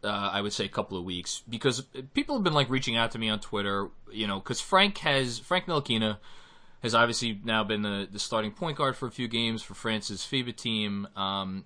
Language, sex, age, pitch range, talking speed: English, male, 20-39, 105-140 Hz, 225 wpm